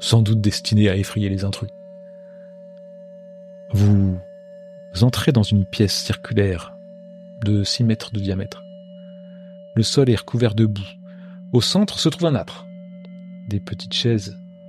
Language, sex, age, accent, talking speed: French, male, 40-59, French, 135 wpm